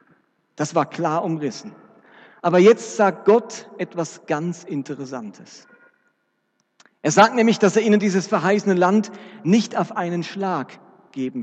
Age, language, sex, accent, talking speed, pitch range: 40-59, German, male, German, 130 wpm, 155-195 Hz